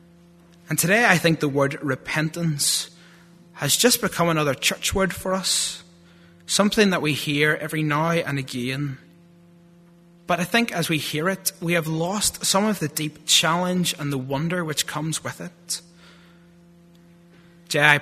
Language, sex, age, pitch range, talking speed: English, male, 20-39, 145-175 Hz, 155 wpm